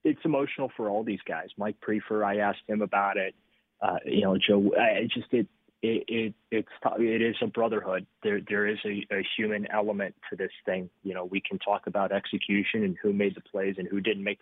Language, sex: English, male